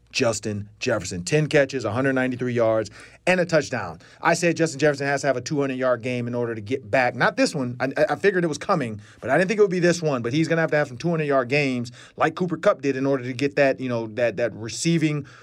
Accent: American